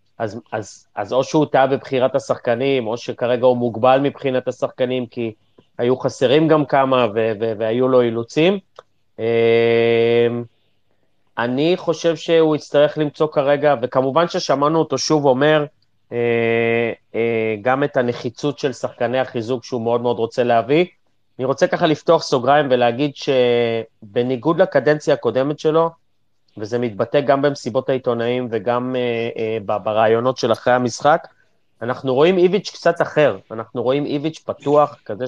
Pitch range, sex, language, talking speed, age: 115-145 Hz, male, Hebrew, 135 wpm, 30-49